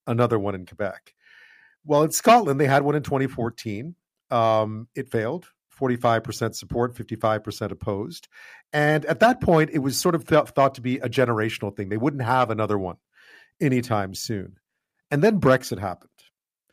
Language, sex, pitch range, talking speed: English, male, 110-145 Hz, 160 wpm